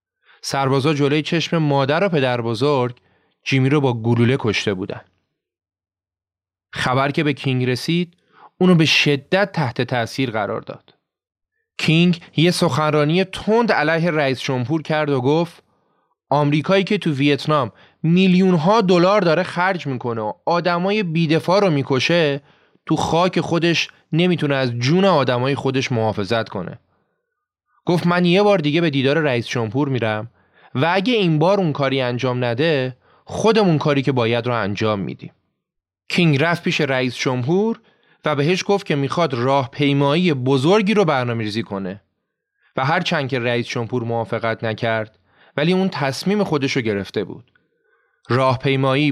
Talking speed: 140 wpm